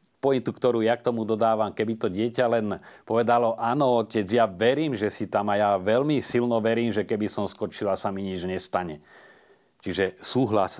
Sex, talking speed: male, 185 wpm